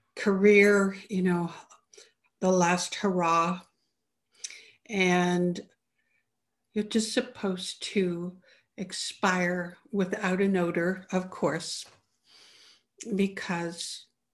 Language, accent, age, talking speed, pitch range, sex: English, American, 60-79, 75 wpm, 185-235 Hz, female